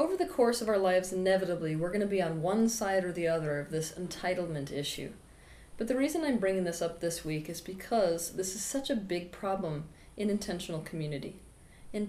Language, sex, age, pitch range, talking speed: English, female, 30-49, 160-210 Hz, 210 wpm